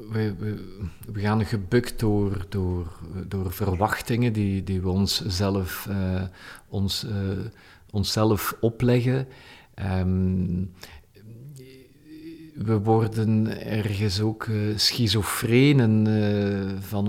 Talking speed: 75 wpm